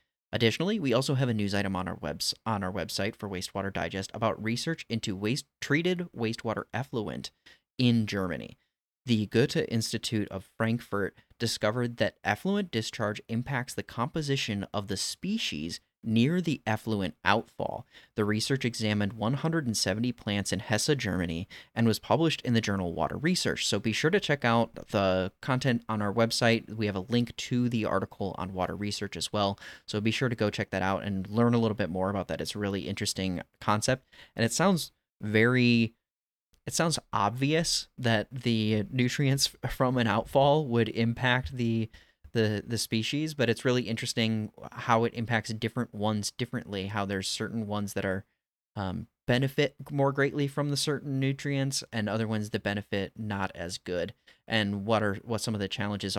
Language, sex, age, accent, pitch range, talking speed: English, male, 30-49, American, 100-120 Hz, 175 wpm